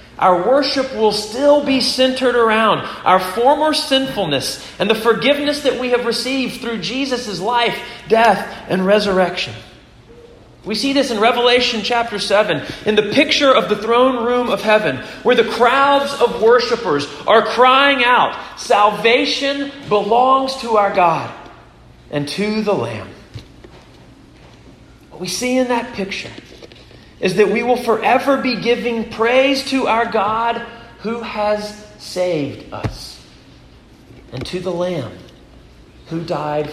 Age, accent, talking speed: 40-59, American, 135 wpm